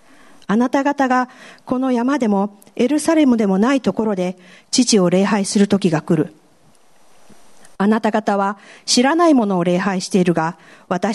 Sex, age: female, 50-69